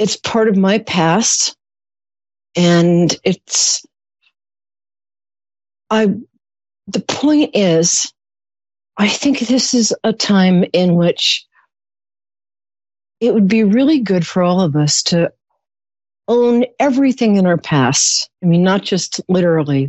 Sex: female